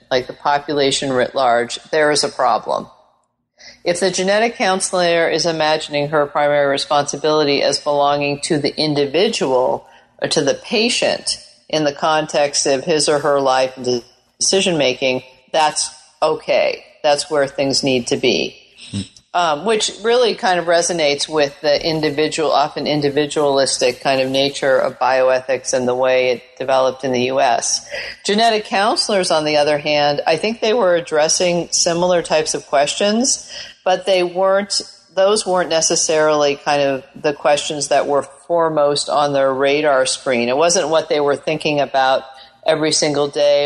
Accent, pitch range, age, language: American, 140-165 Hz, 40-59, English